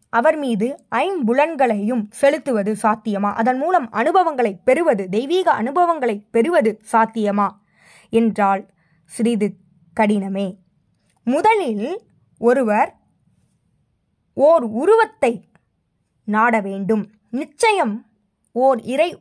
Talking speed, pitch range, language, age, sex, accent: 80 wpm, 210-290 Hz, Tamil, 20-39, female, native